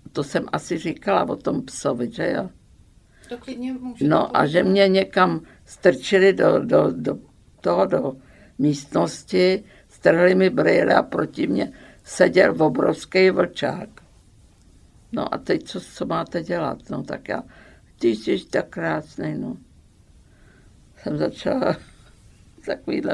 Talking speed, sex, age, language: 125 wpm, female, 50-69, Czech